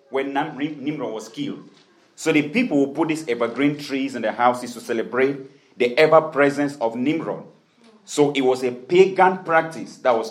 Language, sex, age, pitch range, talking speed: English, male, 40-59, 125-155 Hz, 170 wpm